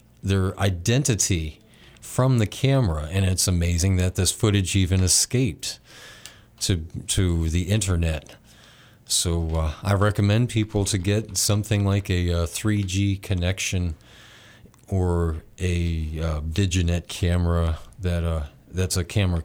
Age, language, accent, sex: 40-59, English, American, male